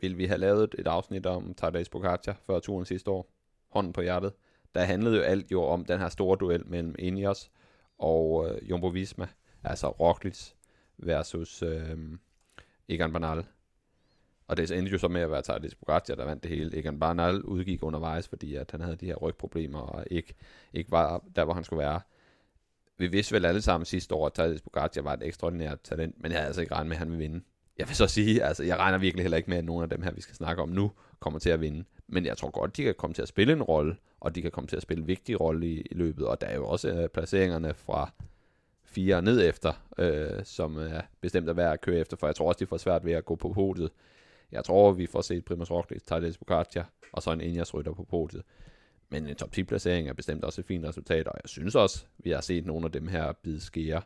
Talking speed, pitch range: 240 wpm, 80-90 Hz